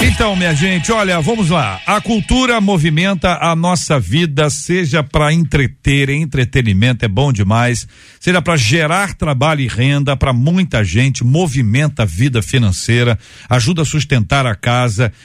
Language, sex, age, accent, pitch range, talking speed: Portuguese, male, 50-69, Brazilian, 130-170 Hz, 145 wpm